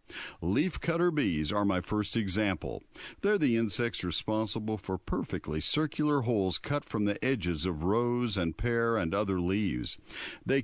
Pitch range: 95-120 Hz